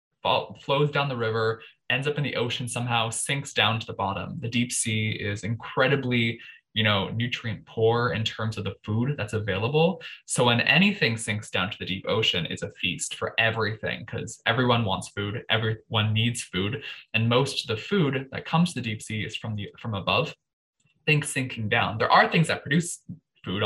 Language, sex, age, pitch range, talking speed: English, male, 20-39, 105-130 Hz, 195 wpm